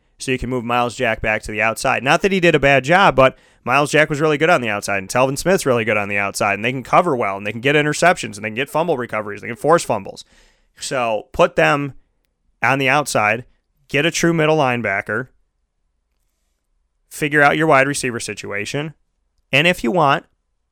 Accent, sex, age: American, male, 30-49